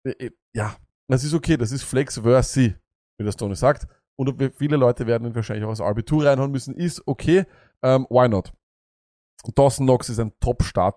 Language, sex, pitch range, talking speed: German, male, 115-150 Hz, 185 wpm